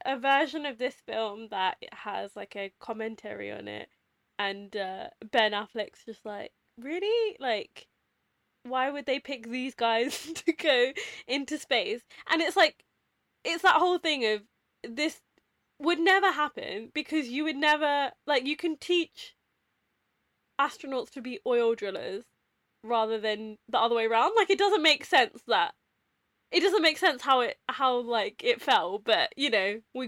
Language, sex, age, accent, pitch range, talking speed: English, female, 10-29, British, 225-330 Hz, 160 wpm